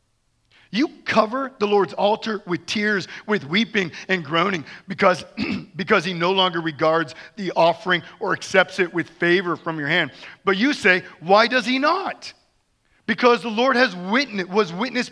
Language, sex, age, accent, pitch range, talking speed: English, male, 40-59, American, 165-220 Hz, 165 wpm